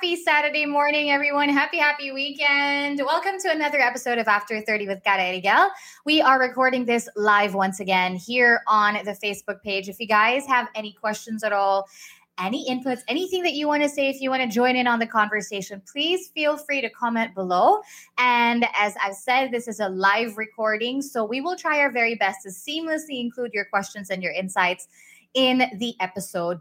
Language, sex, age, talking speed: English, female, 20-39, 195 wpm